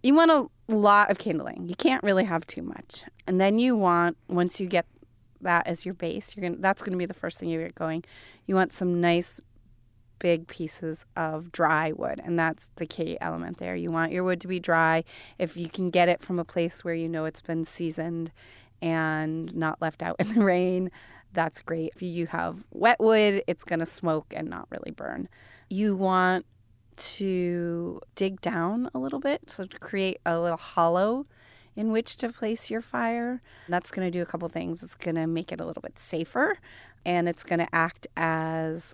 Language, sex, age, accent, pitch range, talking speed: English, female, 30-49, American, 165-195 Hz, 205 wpm